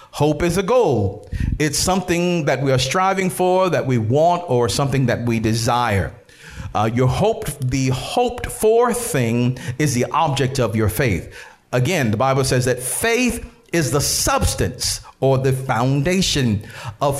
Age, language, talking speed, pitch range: 50-69, English, 155 wpm, 120-160 Hz